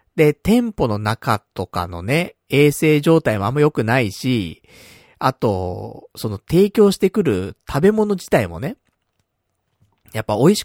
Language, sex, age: Japanese, male, 40-59